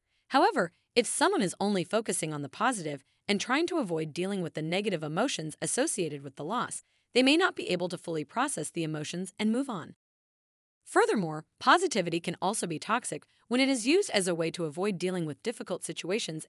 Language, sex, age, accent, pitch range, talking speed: English, female, 30-49, American, 160-235 Hz, 195 wpm